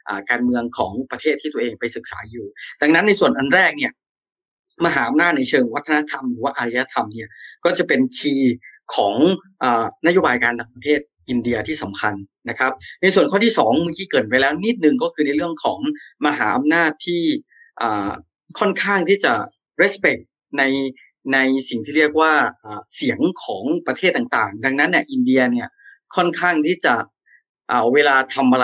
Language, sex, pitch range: Thai, male, 125-170 Hz